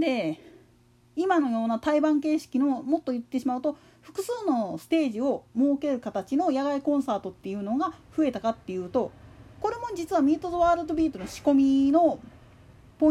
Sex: female